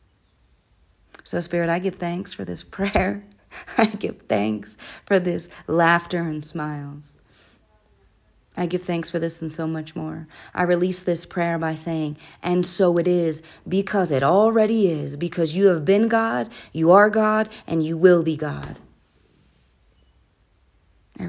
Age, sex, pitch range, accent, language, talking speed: 30-49, female, 150-205 Hz, American, English, 150 wpm